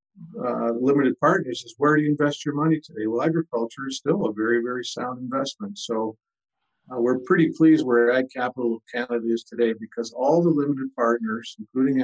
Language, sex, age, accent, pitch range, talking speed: English, male, 50-69, American, 115-140 Hz, 185 wpm